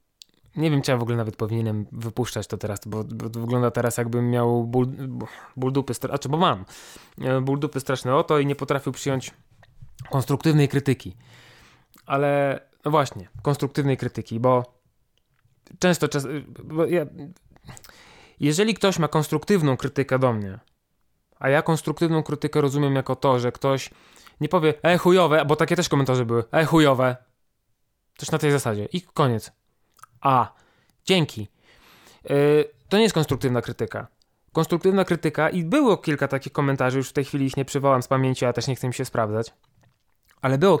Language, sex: Polish, male